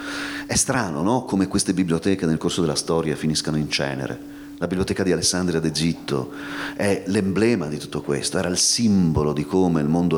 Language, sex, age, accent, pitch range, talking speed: Italian, male, 40-59, native, 80-95 Hz, 175 wpm